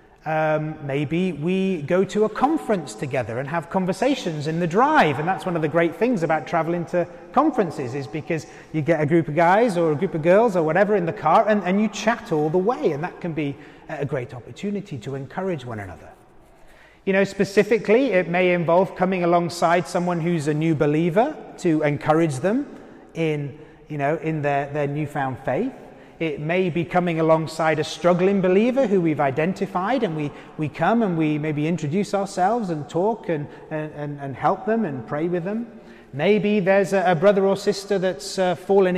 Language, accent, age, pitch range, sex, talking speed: English, British, 30-49, 150-190 Hz, male, 195 wpm